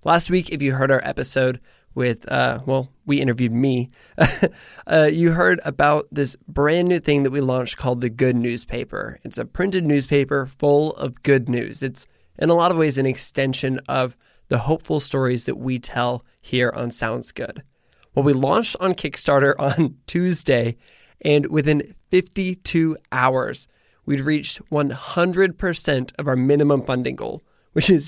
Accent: American